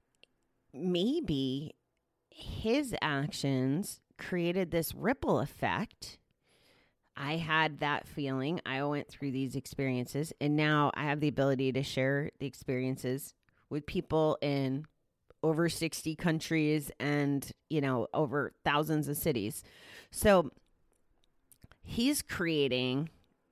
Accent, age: American, 30-49